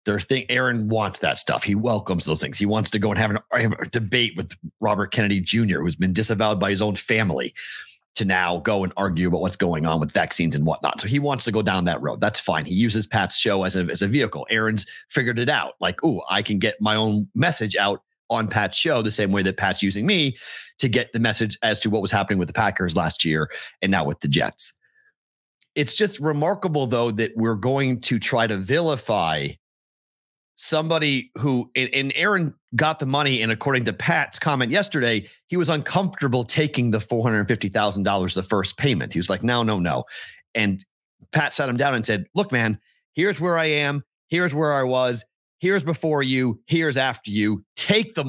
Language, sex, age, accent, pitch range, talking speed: English, male, 40-59, American, 105-145 Hz, 210 wpm